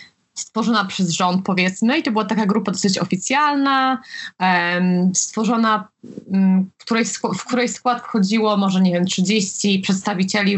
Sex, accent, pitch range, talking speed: female, native, 190-240 Hz, 120 wpm